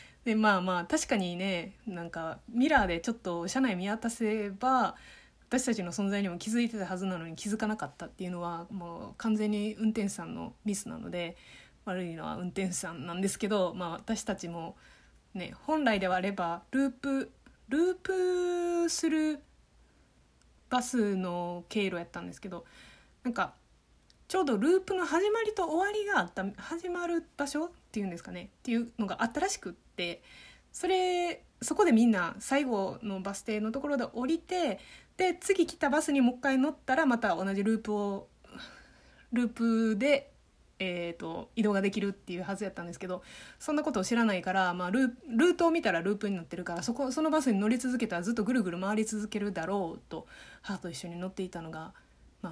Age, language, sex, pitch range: 20-39, Japanese, female, 185-265 Hz